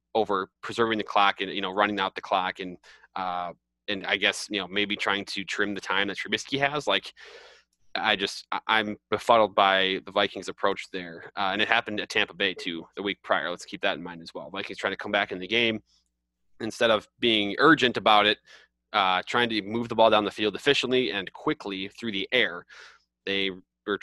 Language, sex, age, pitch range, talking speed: English, male, 20-39, 90-105 Hz, 215 wpm